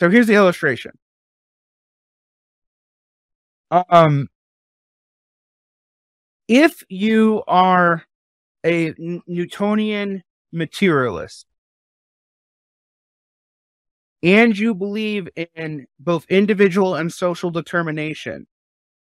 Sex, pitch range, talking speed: male, 130-175 Hz, 65 wpm